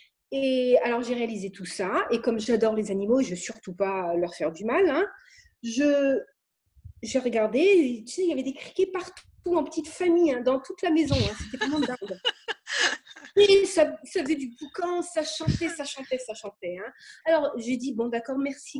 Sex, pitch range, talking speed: female, 255-360 Hz, 195 wpm